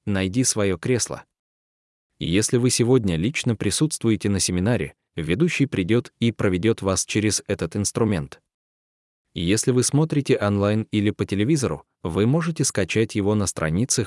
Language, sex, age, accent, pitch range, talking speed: Russian, male, 20-39, native, 95-120 Hz, 130 wpm